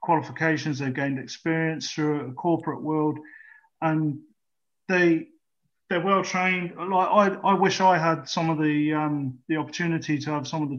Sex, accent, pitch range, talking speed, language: male, British, 145-170 Hz, 165 wpm, English